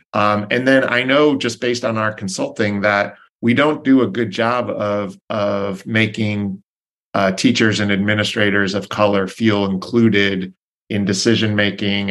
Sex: male